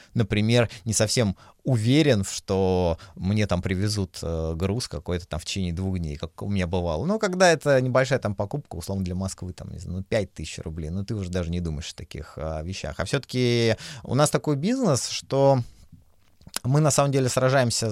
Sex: male